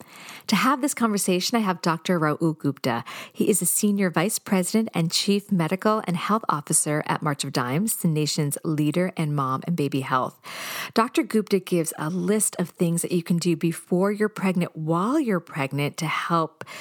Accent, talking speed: American, 185 wpm